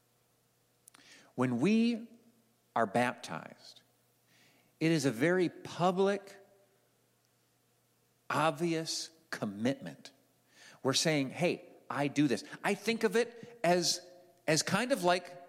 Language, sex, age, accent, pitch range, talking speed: English, male, 50-69, American, 135-180 Hz, 100 wpm